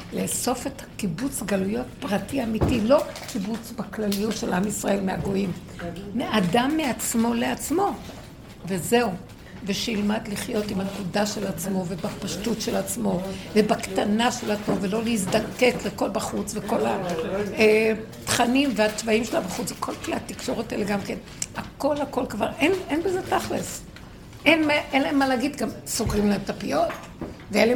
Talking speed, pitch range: 135 wpm, 200-255 Hz